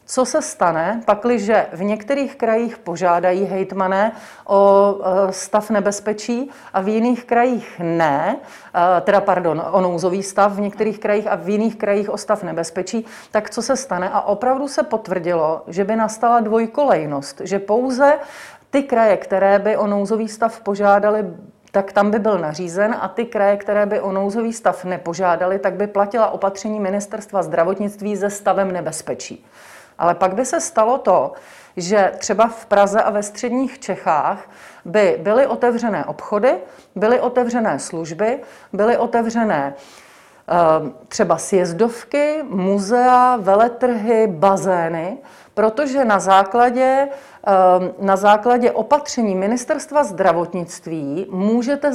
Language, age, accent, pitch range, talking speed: Czech, 40-59, native, 190-235 Hz, 130 wpm